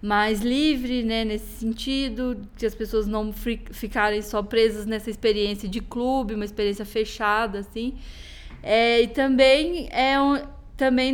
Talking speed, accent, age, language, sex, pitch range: 125 wpm, Brazilian, 20-39, Portuguese, female, 220-255 Hz